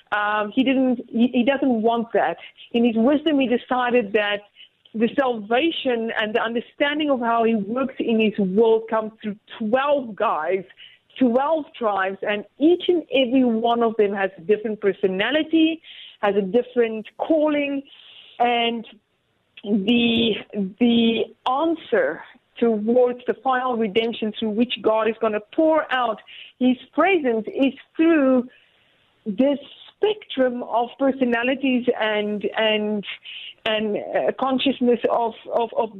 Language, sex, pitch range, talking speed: English, female, 220-270 Hz, 130 wpm